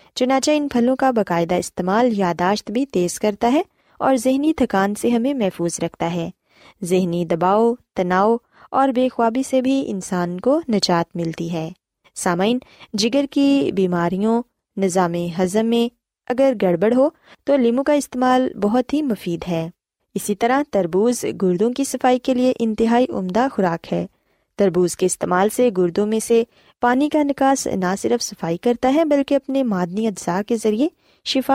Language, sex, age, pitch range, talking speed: Urdu, female, 20-39, 185-255 Hz, 160 wpm